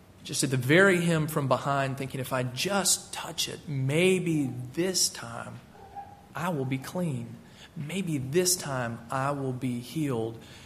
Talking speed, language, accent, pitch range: 150 wpm, English, American, 120-175 Hz